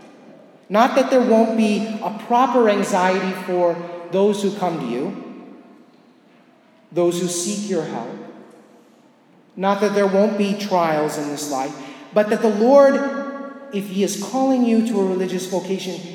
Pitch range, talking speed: 175-220 Hz, 150 wpm